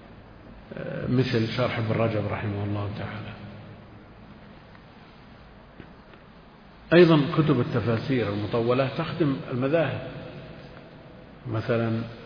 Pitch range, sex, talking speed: 110-130 Hz, male, 70 wpm